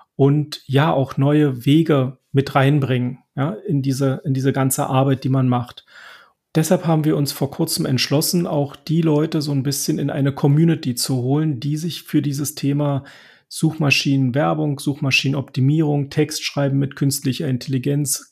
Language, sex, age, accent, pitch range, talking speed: German, male, 40-59, German, 135-160 Hz, 150 wpm